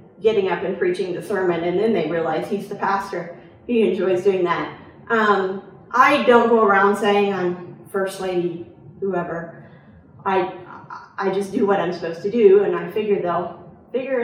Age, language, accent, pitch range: 40-59, English, American, 185-230 Hz